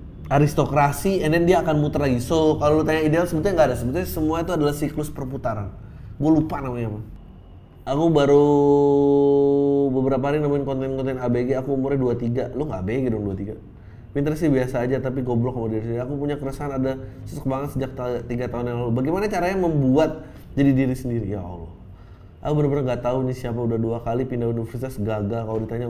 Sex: male